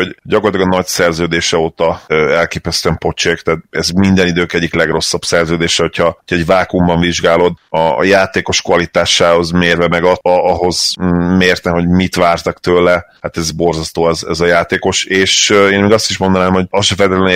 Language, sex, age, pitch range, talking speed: Hungarian, male, 30-49, 85-90 Hz, 175 wpm